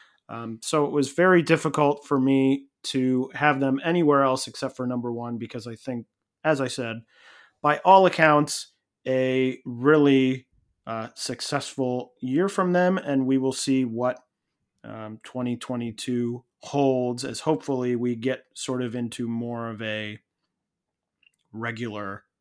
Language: English